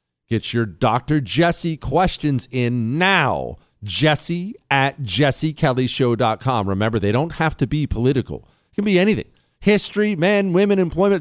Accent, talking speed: American, 135 wpm